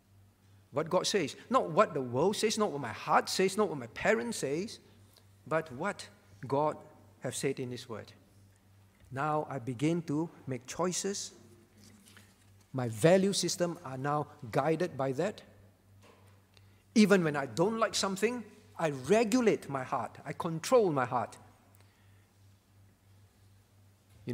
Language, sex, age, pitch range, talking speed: English, male, 50-69, 100-160 Hz, 135 wpm